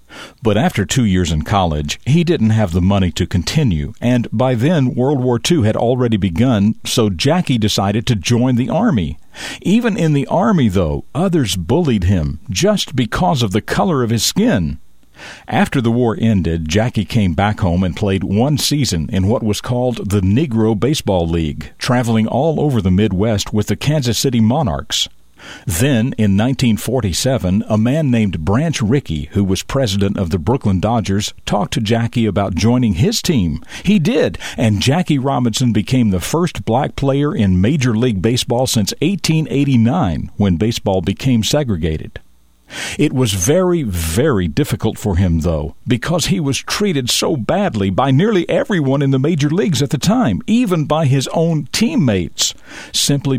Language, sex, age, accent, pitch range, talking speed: English, male, 50-69, American, 100-135 Hz, 165 wpm